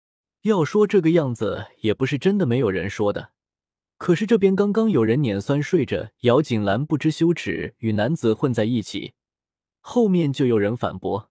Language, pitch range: Chinese, 110-170 Hz